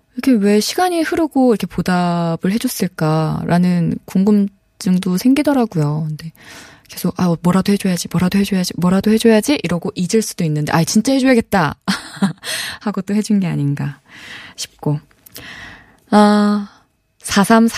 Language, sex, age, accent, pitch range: Korean, female, 20-39, native, 165-230 Hz